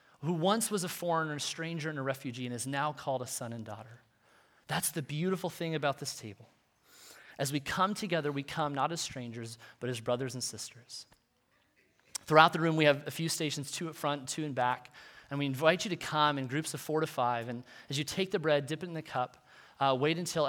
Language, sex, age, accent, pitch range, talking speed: English, male, 30-49, American, 125-155 Hz, 230 wpm